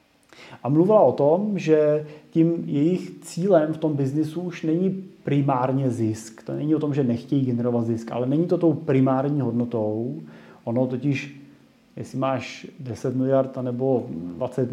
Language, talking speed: Czech, 150 wpm